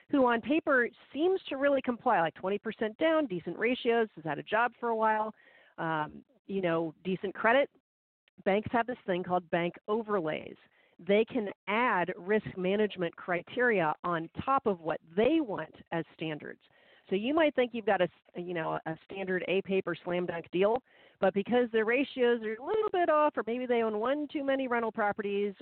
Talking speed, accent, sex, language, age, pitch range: 185 wpm, American, female, English, 40-59, 175-235 Hz